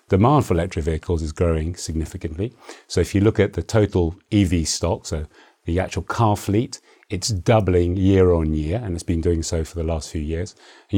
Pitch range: 85-100 Hz